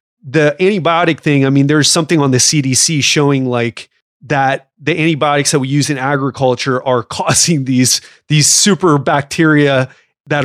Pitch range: 145-175 Hz